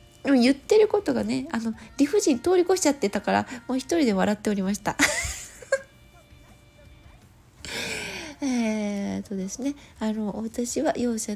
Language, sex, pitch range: Japanese, female, 210-285 Hz